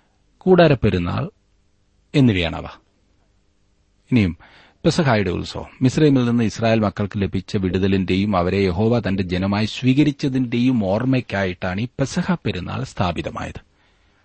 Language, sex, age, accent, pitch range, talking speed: Malayalam, male, 30-49, native, 90-120 Hz, 65 wpm